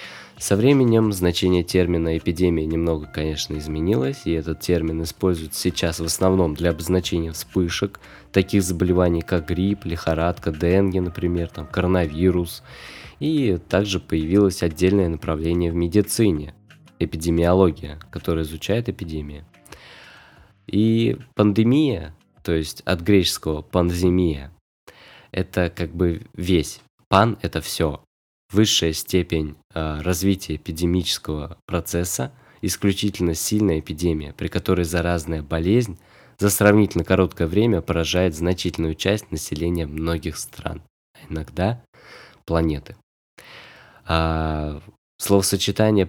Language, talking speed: Russian, 100 wpm